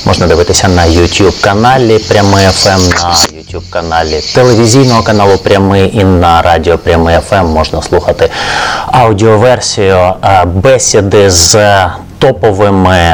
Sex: male